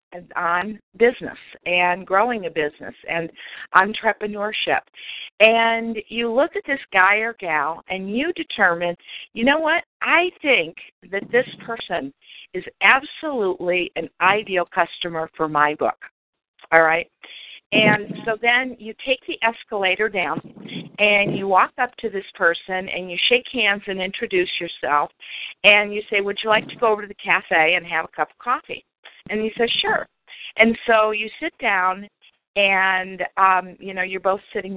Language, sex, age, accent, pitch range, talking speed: English, female, 50-69, American, 180-225 Hz, 160 wpm